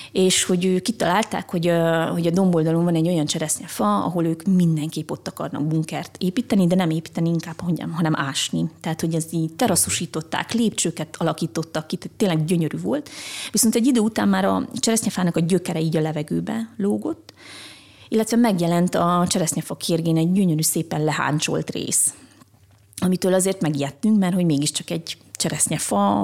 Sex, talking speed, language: female, 155 wpm, Hungarian